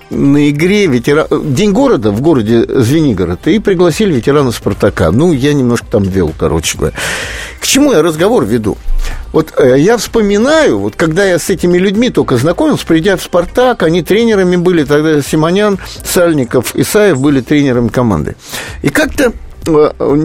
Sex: male